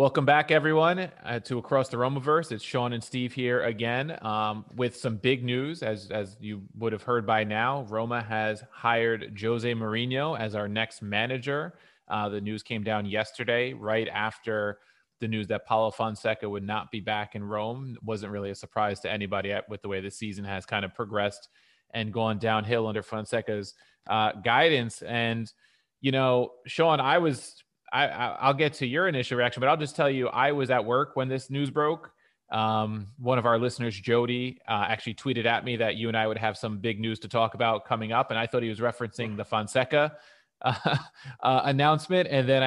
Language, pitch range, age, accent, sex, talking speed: English, 110-130 Hz, 30-49, American, male, 200 wpm